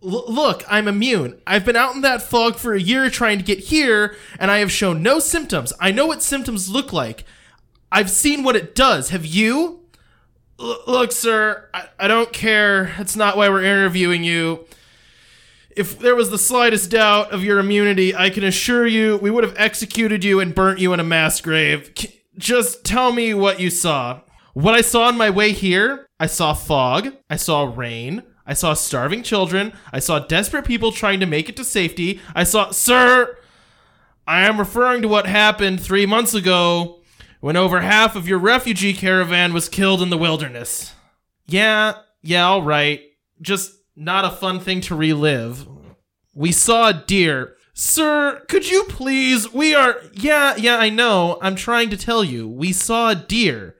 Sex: male